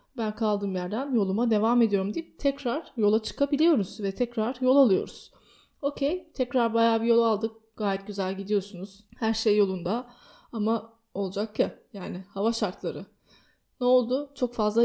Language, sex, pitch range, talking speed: Turkish, female, 200-245 Hz, 145 wpm